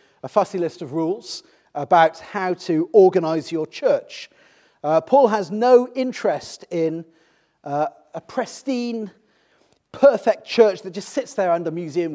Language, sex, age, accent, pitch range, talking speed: English, male, 40-59, British, 175-255 Hz, 140 wpm